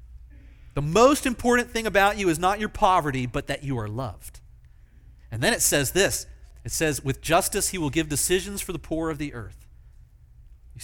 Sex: male